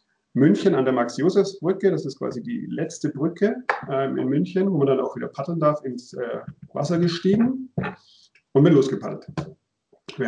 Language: German